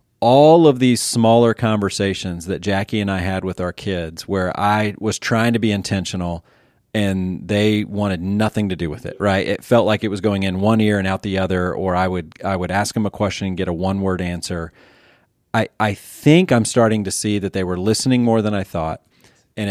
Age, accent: 30-49, American